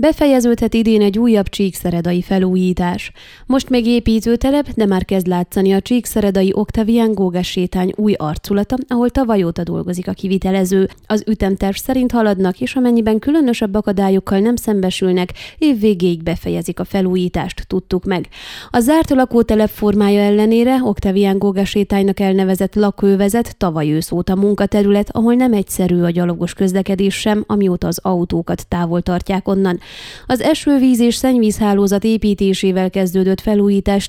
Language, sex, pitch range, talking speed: Hungarian, female, 185-230 Hz, 130 wpm